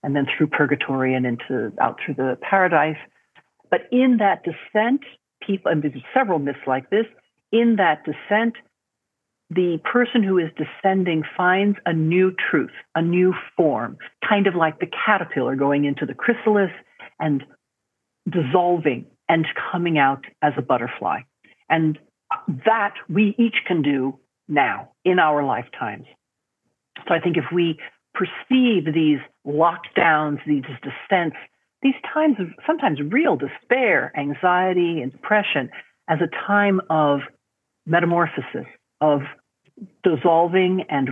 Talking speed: 130 wpm